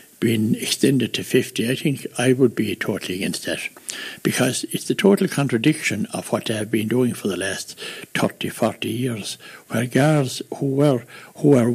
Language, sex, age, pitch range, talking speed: English, male, 60-79, 115-170 Hz, 180 wpm